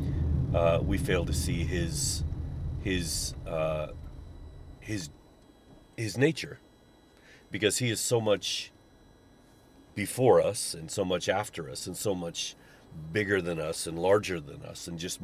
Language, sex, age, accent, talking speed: English, male, 40-59, American, 140 wpm